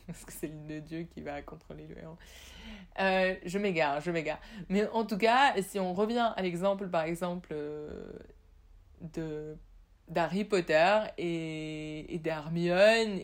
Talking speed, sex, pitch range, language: 155 wpm, female, 150-195 Hz, French